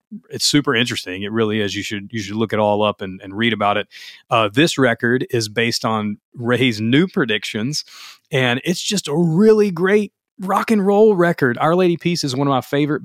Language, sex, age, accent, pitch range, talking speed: English, male, 30-49, American, 110-140 Hz, 210 wpm